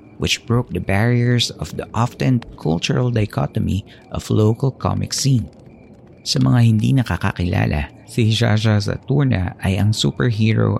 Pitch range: 90-120 Hz